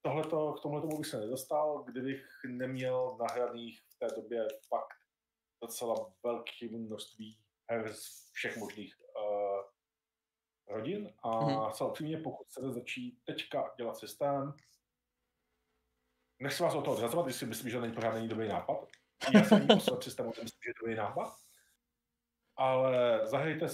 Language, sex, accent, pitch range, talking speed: Czech, male, native, 115-140 Hz, 130 wpm